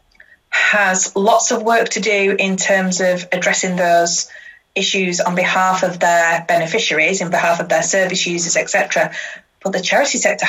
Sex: female